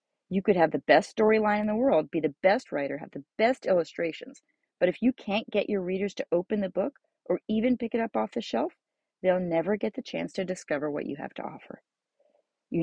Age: 40-59